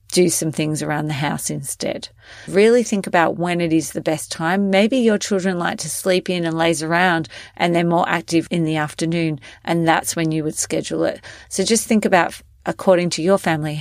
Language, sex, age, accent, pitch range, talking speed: English, female, 40-59, Australian, 155-190 Hz, 210 wpm